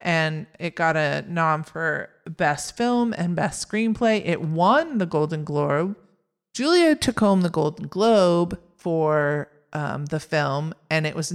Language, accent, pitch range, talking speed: English, American, 155-190 Hz, 155 wpm